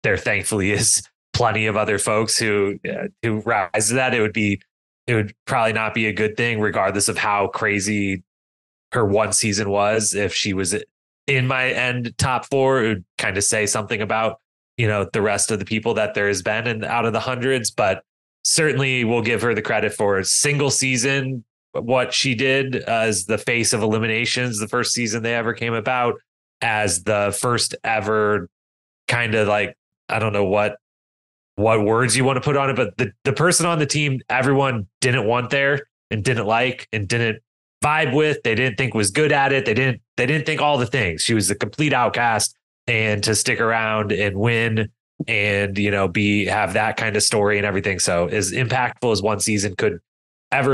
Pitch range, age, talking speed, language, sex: 105-125 Hz, 20-39, 200 wpm, English, male